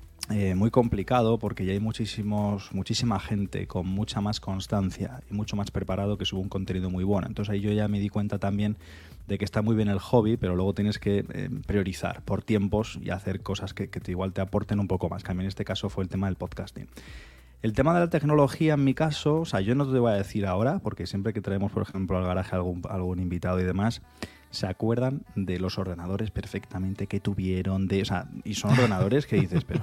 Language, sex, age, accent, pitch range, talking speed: Spanish, male, 20-39, Spanish, 95-110 Hz, 230 wpm